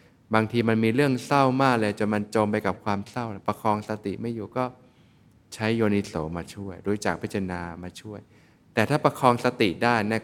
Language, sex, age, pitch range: Thai, male, 20-39, 95-115 Hz